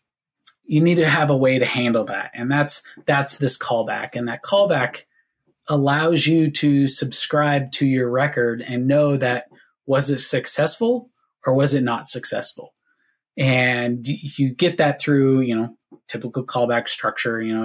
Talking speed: 160 wpm